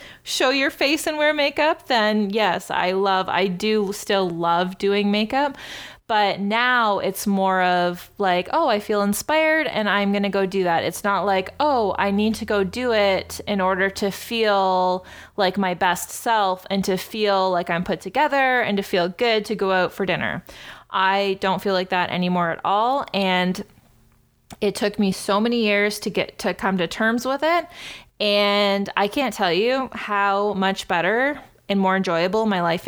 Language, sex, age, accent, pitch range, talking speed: English, female, 20-39, American, 185-225 Hz, 185 wpm